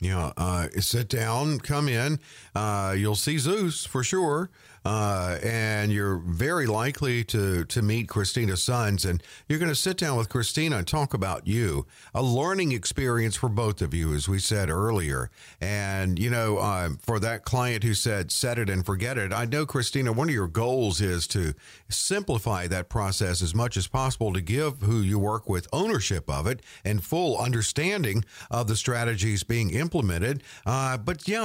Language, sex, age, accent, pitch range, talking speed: English, male, 50-69, American, 100-140 Hz, 185 wpm